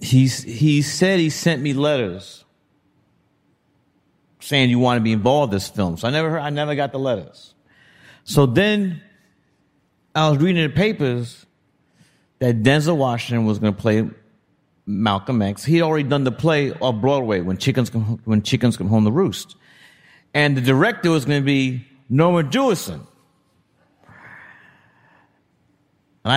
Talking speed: 155 wpm